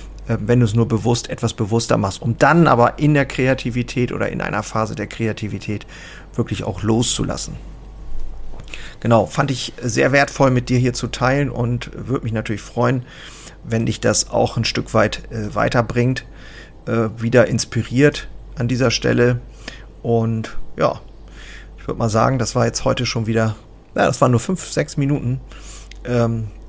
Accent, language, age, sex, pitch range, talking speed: German, German, 40-59, male, 110-125 Hz, 160 wpm